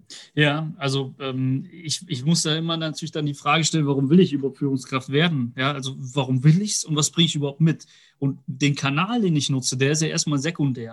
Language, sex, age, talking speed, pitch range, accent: German, male, 30-49, 230 wpm, 145-170 Hz, German